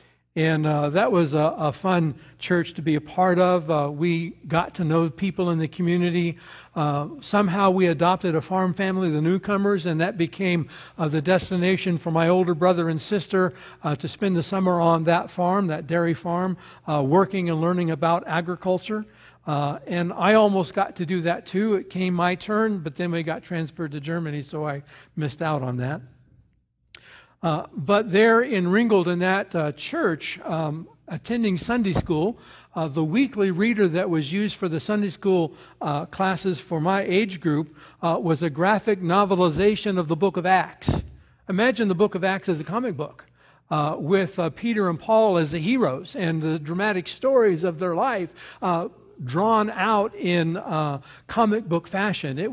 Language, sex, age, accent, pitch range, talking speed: English, male, 60-79, American, 165-195 Hz, 185 wpm